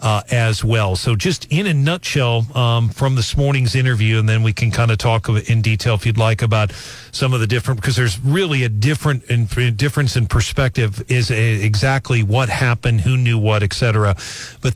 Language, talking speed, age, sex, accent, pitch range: English, 205 wpm, 40-59, male, American, 110-135 Hz